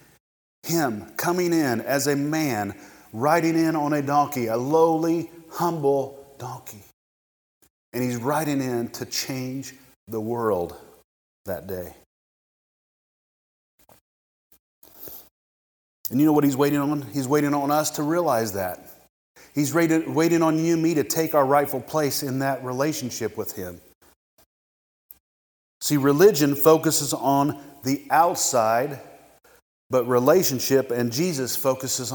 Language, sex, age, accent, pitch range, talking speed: English, male, 30-49, American, 115-145 Hz, 125 wpm